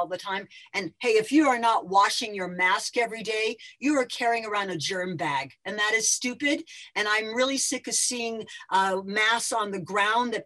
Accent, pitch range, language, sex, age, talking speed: American, 200-265 Hz, English, female, 50-69, 210 wpm